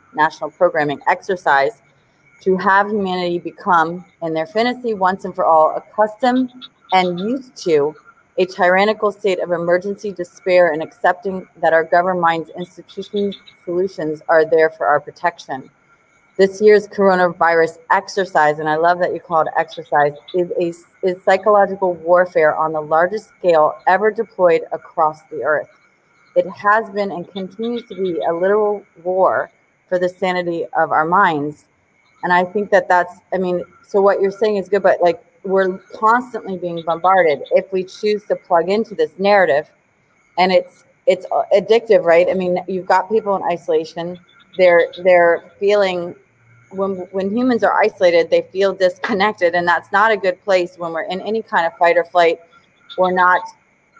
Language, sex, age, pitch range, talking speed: English, female, 30-49, 170-200 Hz, 165 wpm